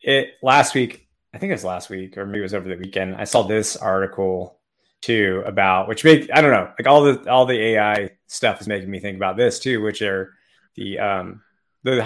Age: 30-49